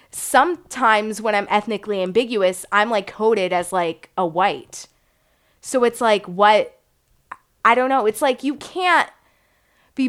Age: 20-39